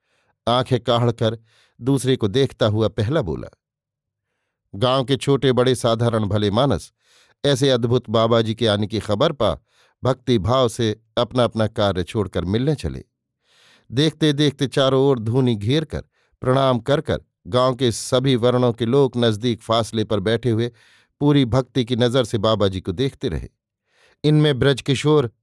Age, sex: 50-69, male